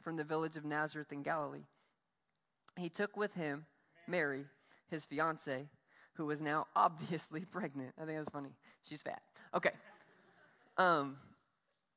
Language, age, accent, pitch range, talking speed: English, 20-39, American, 160-250 Hz, 135 wpm